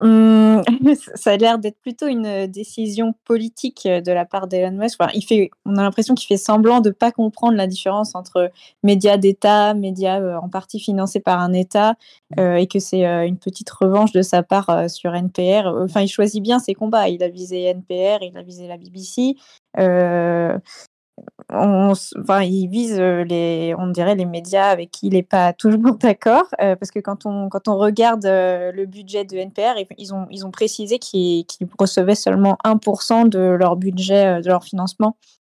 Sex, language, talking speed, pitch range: female, French, 190 wpm, 180-215 Hz